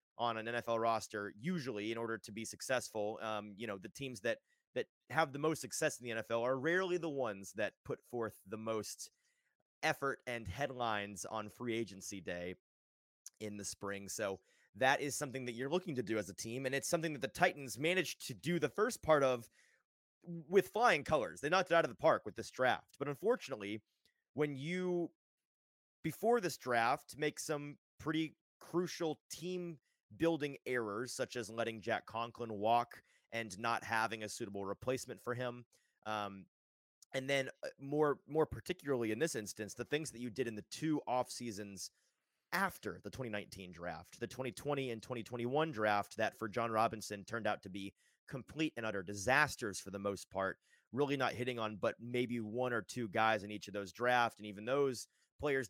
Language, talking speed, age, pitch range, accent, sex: English, 185 wpm, 30-49, 105-145 Hz, American, male